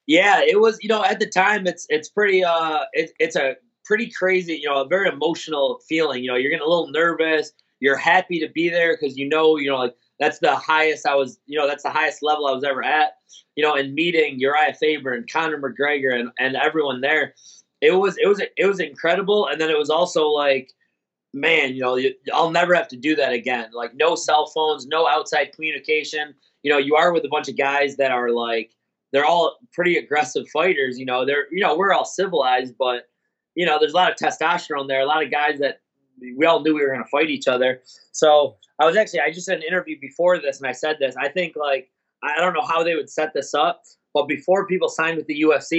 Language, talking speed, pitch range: English, 235 wpm, 140-180 Hz